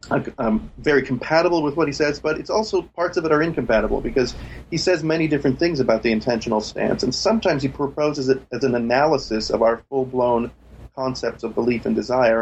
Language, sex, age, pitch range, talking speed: English, male, 30-49, 120-150 Hz, 200 wpm